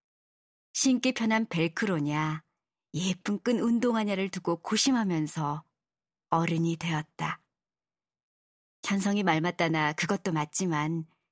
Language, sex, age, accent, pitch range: Korean, male, 40-59, native, 160-215 Hz